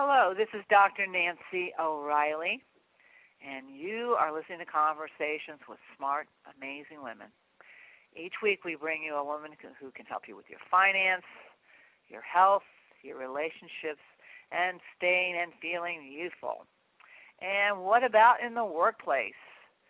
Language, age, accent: English, 50-69, American